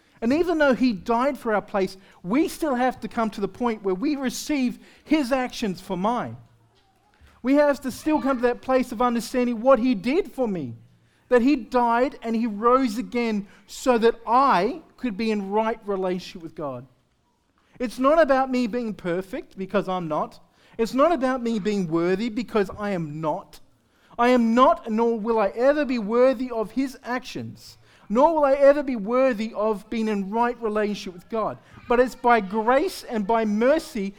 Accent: Australian